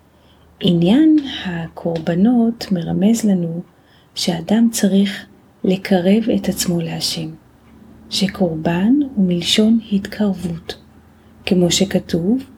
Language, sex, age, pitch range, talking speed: Hebrew, female, 30-49, 170-205 Hz, 75 wpm